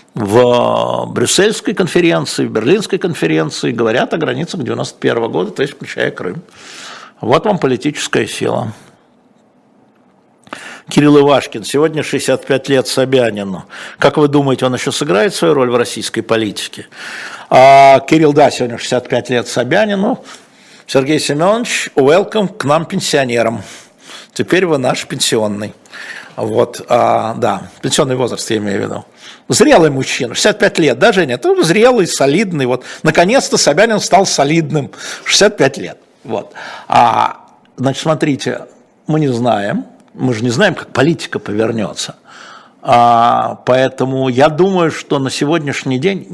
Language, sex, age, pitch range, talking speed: Russian, male, 60-79, 130-165 Hz, 125 wpm